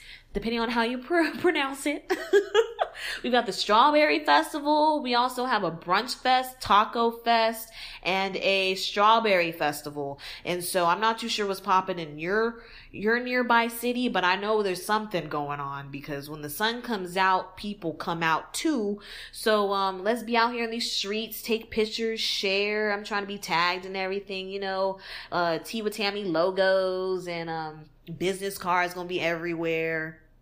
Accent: American